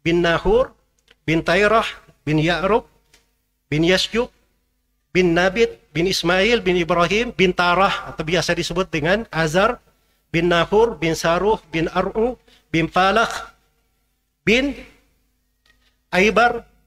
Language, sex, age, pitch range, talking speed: Indonesian, male, 50-69, 160-215 Hz, 110 wpm